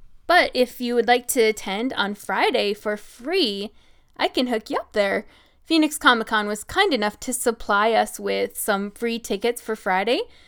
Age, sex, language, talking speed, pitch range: 10-29, female, English, 185 wpm, 210-265 Hz